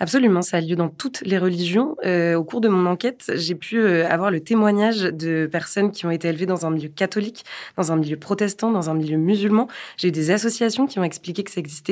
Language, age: French, 20-39